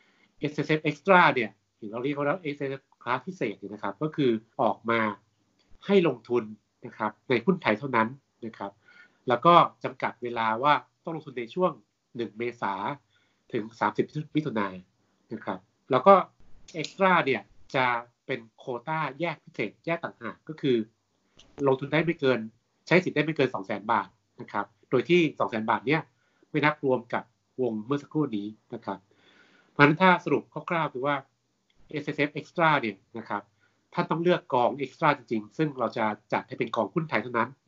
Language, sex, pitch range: Thai, male, 110-150 Hz